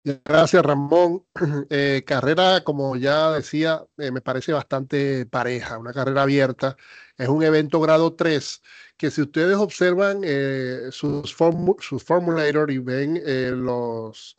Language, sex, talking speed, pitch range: Spanish, male, 140 wpm, 140-175 Hz